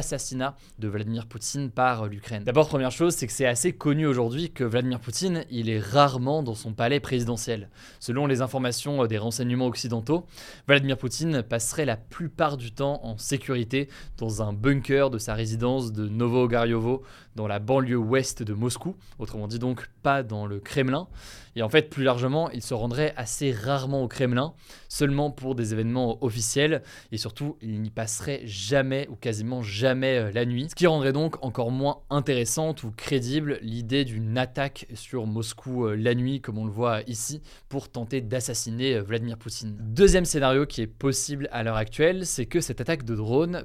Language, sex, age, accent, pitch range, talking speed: French, male, 20-39, French, 115-145 Hz, 175 wpm